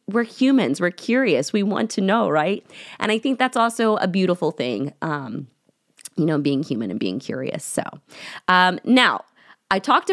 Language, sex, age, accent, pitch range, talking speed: English, female, 20-39, American, 165-220 Hz, 180 wpm